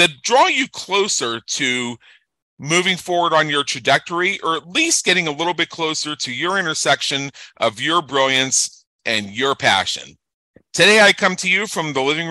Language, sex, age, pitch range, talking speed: English, male, 40-59, 125-165 Hz, 170 wpm